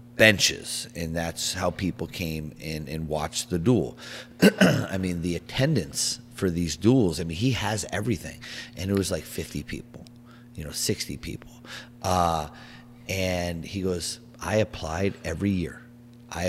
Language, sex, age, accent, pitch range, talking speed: English, male, 30-49, American, 85-120 Hz, 155 wpm